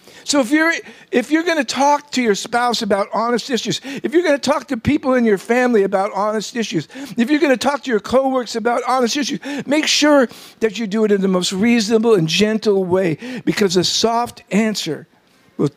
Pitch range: 180-250 Hz